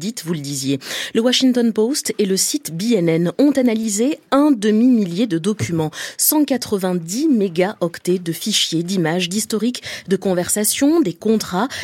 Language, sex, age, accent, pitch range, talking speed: French, female, 20-39, French, 175-250 Hz, 135 wpm